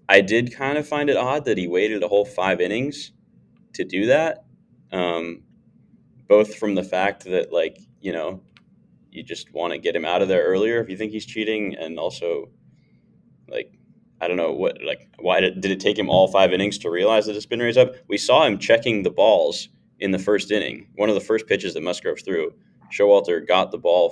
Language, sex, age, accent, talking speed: English, male, 20-39, American, 215 wpm